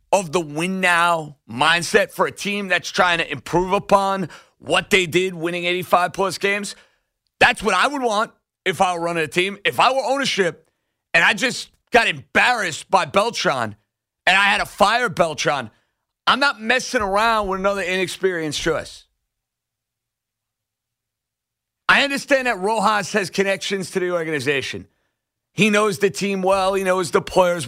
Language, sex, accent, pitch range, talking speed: English, male, American, 165-210 Hz, 160 wpm